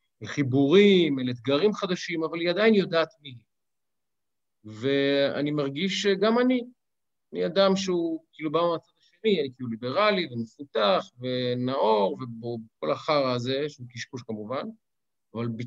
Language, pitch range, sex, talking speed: Hebrew, 120-180 Hz, male, 125 wpm